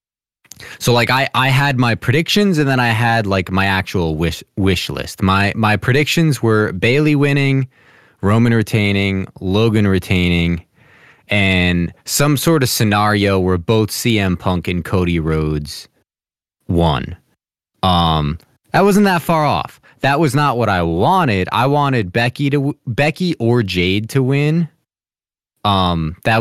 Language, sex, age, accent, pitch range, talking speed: English, male, 20-39, American, 90-125 Hz, 145 wpm